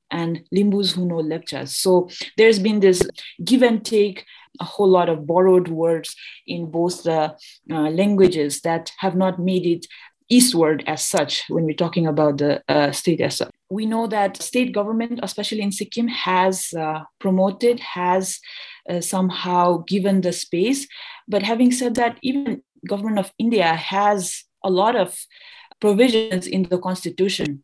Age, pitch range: 30-49, 170-210 Hz